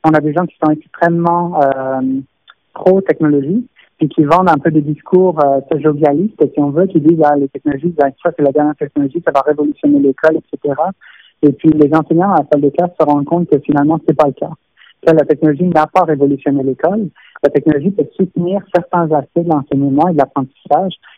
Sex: male